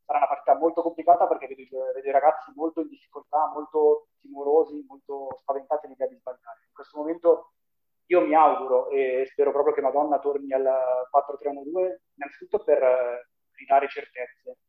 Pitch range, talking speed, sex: 135-170 Hz, 165 wpm, male